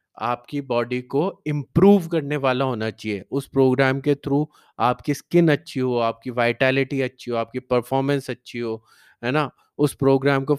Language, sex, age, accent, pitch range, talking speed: Hindi, male, 20-39, native, 125-150 Hz, 165 wpm